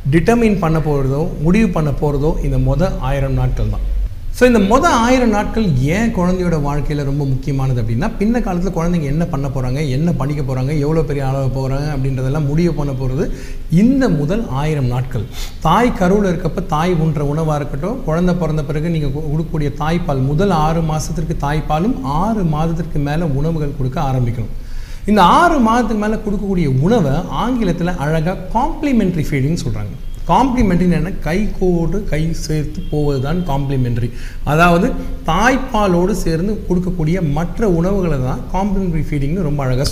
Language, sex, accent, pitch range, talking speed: Tamil, male, native, 135-185 Hz, 145 wpm